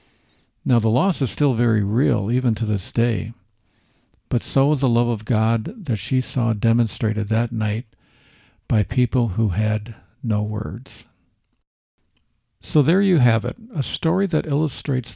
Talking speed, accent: 155 wpm, American